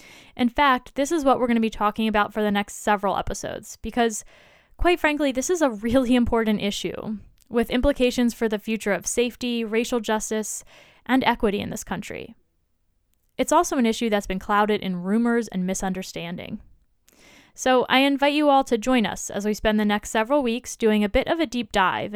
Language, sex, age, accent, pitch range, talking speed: English, female, 10-29, American, 205-255 Hz, 195 wpm